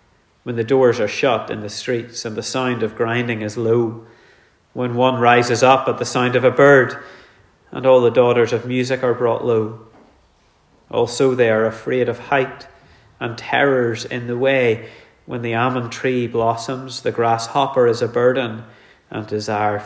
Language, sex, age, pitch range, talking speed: English, male, 30-49, 115-130 Hz, 170 wpm